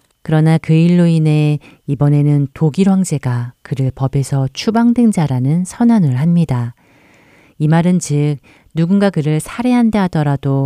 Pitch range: 135-170 Hz